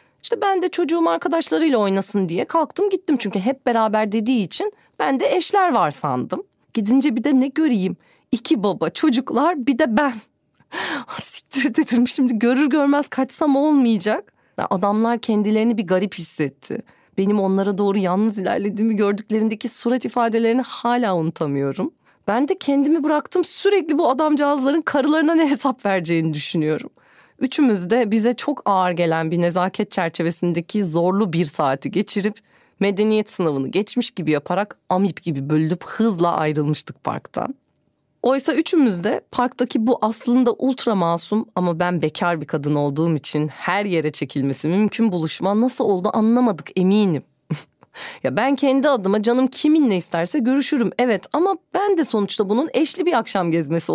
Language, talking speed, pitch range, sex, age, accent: Turkish, 145 wpm, 180-275 Hz, female, 40-59, native